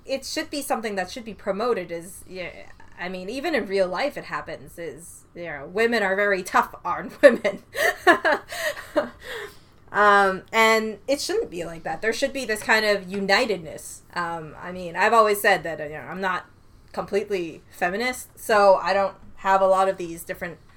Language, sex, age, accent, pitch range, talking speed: English, female, 20-39, American, 175-225 Hz, 180 wpm